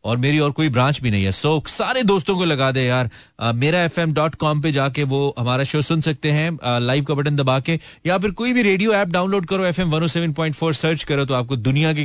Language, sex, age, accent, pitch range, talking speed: Hindi, male, 30-49, native, 125-165 Hz, 90 wpm